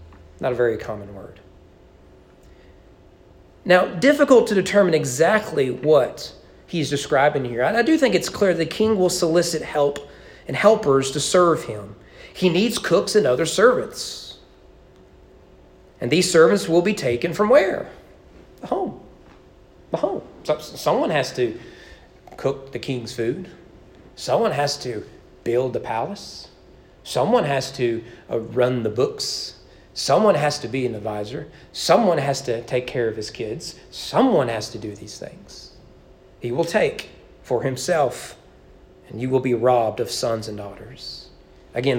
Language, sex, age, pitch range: English, male, 40-59, 115-175 Hz